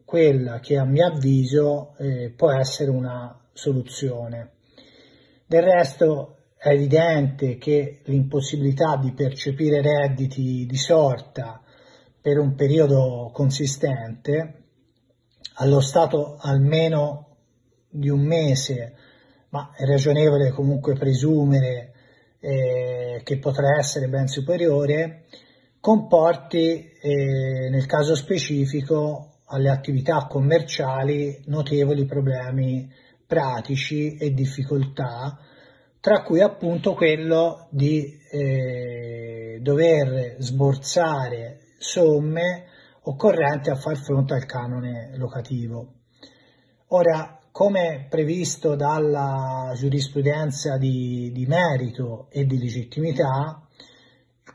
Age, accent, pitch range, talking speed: 30-49, native, 130-155 Hz, 90 wpm